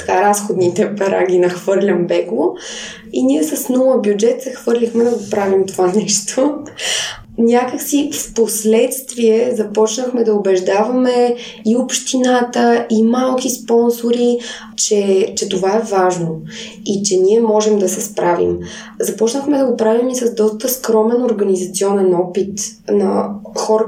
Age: 20-39